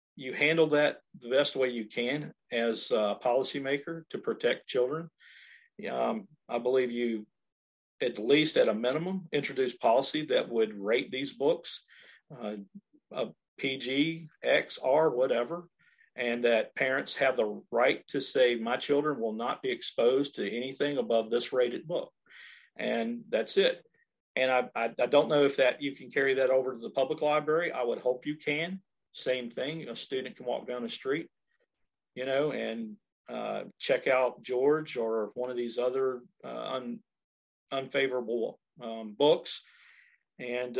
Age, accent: 50-69, American